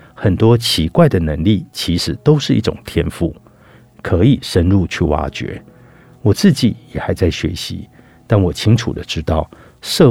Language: Chinese